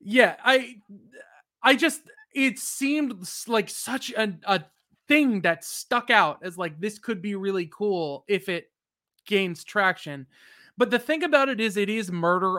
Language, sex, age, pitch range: English, male, 20-39, 170-225 Hz